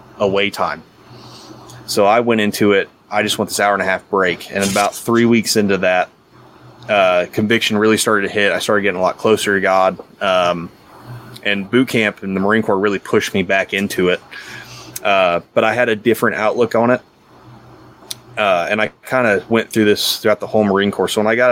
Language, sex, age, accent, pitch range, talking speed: English, male, 20-39, American, 95-110 Hz, 210 wpm